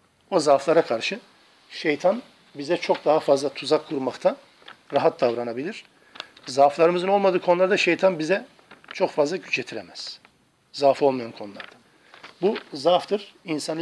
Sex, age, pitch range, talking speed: male, 50-69, 150-190 Hz, 115 wpm